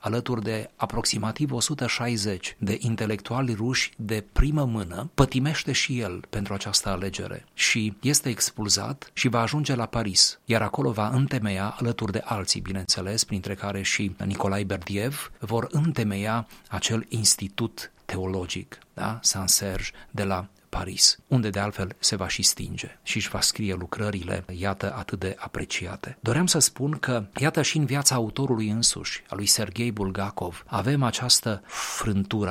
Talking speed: 150 wpm